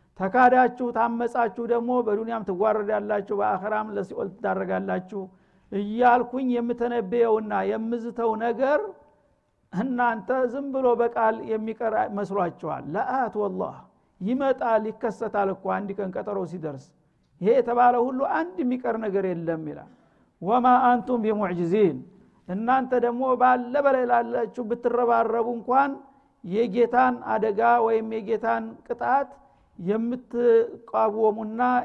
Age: 60-79